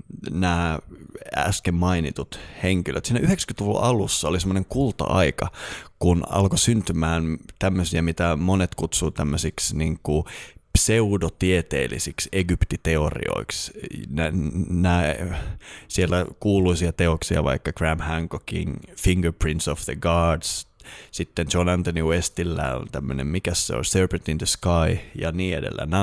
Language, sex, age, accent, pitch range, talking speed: Finnish, male, 30-49, native, 80-100 Hz, 120 wpm